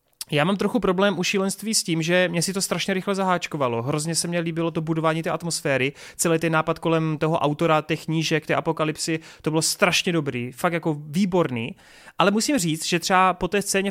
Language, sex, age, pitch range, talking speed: Czech, male, 30-49, 155-185 Hz, 205 wpm